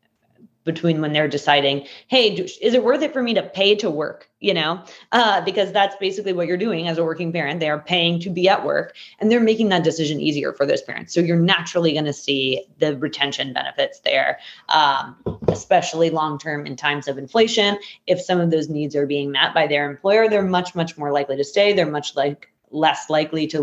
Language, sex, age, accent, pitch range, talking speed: English, female, 20-39, American, 145-185 Hz, 215 wpm